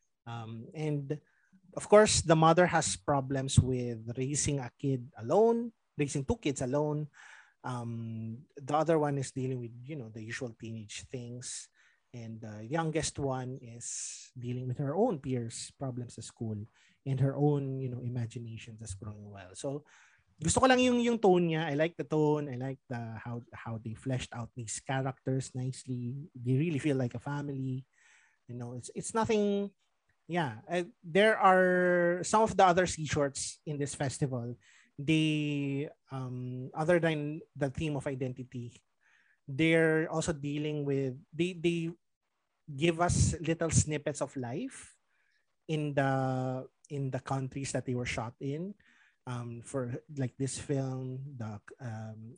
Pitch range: 125-155 Hz